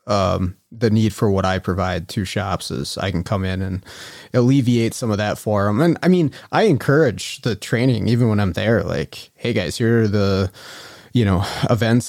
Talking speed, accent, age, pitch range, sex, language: 205 wpm, American, 30-49, 100-125 Hz, male, English